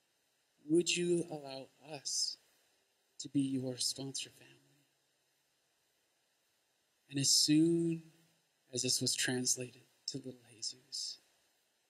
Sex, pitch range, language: male, 130-155 Hz, English